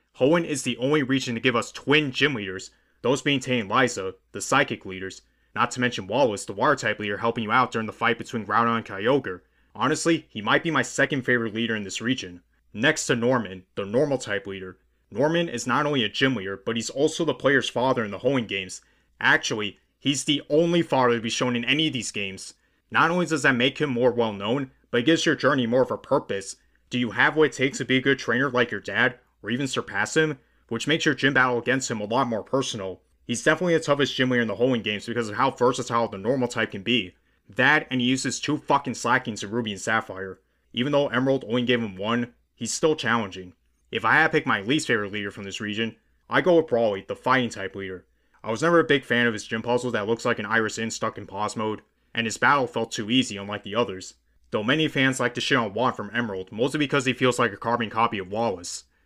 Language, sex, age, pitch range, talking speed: English, male, 30-49, 105-135 Hz, 245 wpm